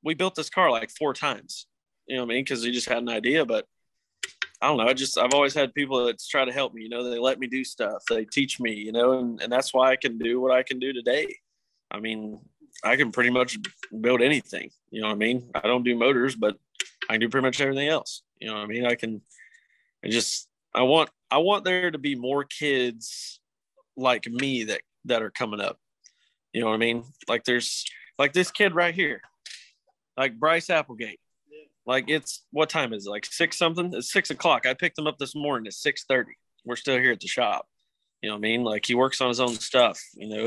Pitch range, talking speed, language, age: 115-145 Hz, 240 wpm, English, 20-39